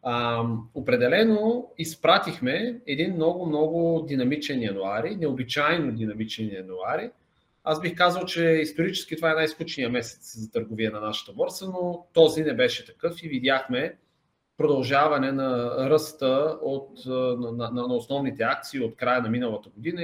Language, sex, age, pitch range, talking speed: Bulgarian, male, 30-49, 125-170 Hz, 135 wpm